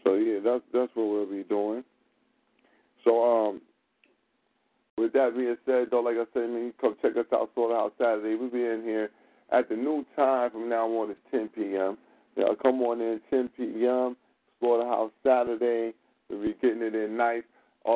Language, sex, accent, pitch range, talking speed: English, male, American, 110-125 Hz, 185 wpm